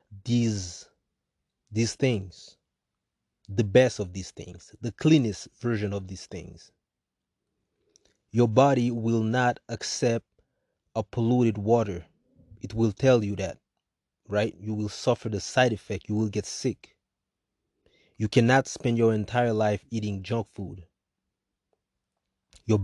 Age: 30-49